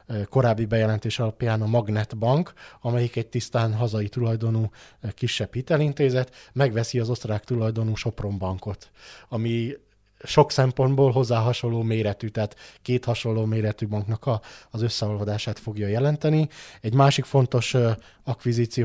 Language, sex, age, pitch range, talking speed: Hungarian, male, 20-39, 110-130 Hz, 120 wpm